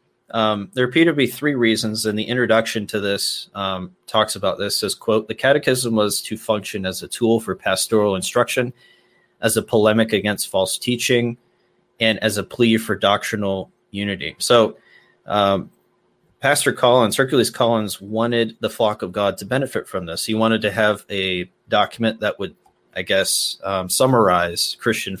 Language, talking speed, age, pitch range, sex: English, 165 wpm, 30-49, 95-110 Hz, male